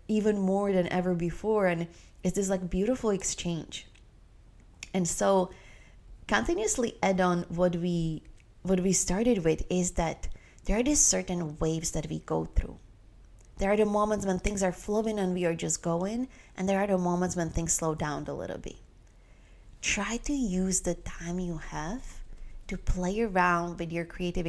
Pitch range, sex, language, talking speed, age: 160-195 Hz, female, English, 175 wpm, 20-39